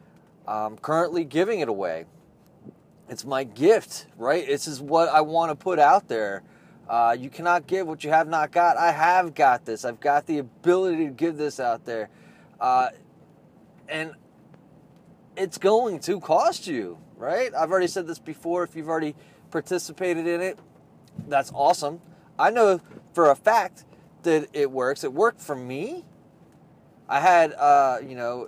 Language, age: English, 30-49